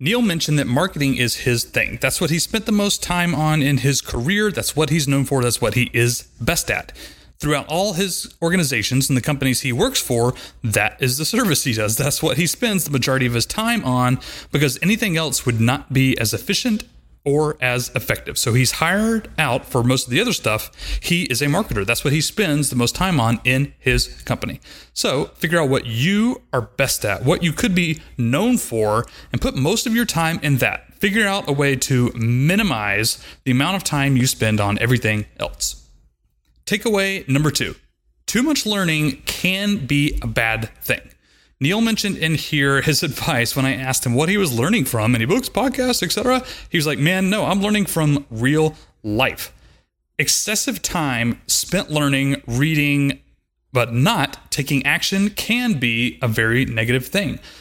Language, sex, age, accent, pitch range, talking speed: English, male, 30-49, American, 125-175 Hz, 190 wpm